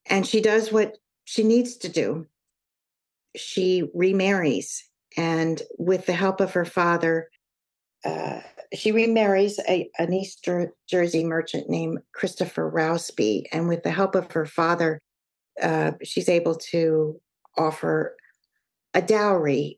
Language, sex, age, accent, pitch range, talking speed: English, female, 50-69, American, 160-195 Hz, 125 wpm